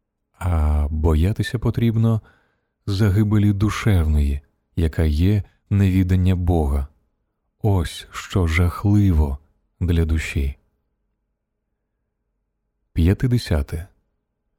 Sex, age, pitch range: male, 30-49, 80-105 Hz